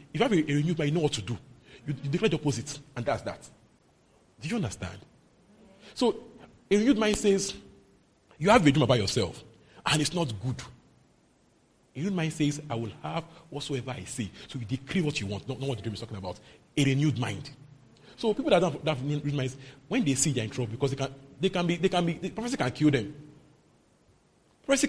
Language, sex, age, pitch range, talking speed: English, male, 40-59, 125-180 Hz, 225 wpm